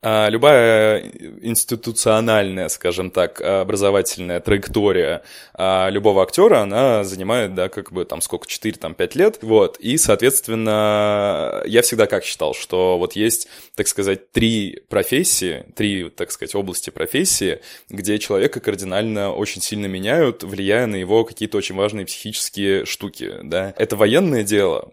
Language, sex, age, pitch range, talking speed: Russian, male, 20-39, 95-110 Hz, 130 wpm